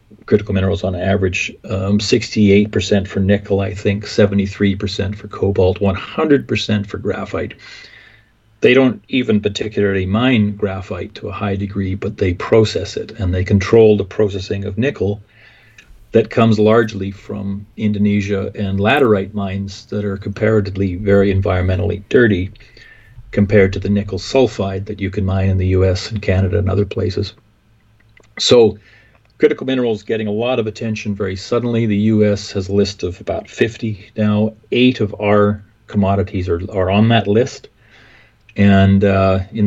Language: English